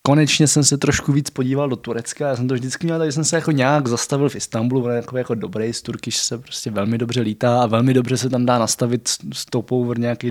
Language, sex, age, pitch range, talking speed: Czech, male, 20-39, 115-135 Hz, 240 wpm